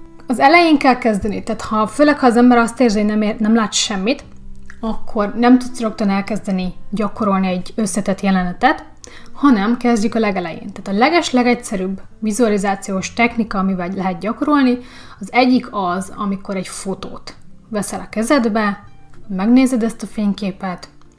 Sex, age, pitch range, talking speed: female, 30-49, 190-240 Hz, 145 wpm